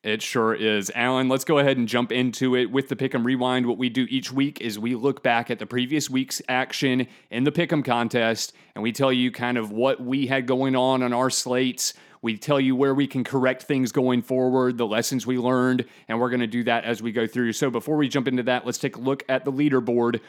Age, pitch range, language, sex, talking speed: 30-49, 120-135 Hz, English, male, 250 wpm